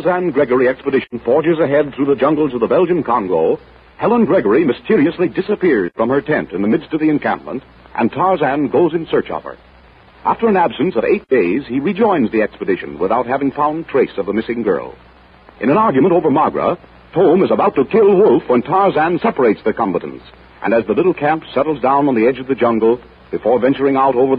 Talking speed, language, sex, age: 200 wpm, English, male, 60-79